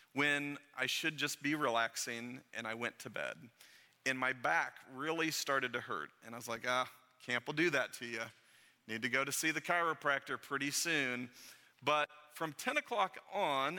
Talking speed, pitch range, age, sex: 185 wpm, 125-155 Hz, 40-59, male